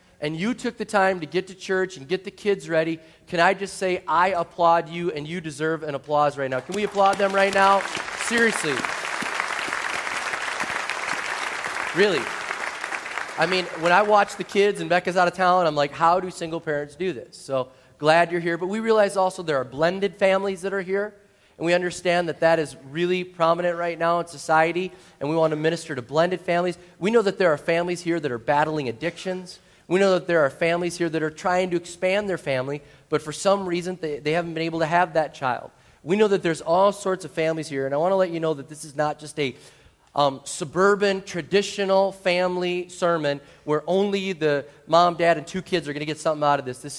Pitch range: 155-185 Hz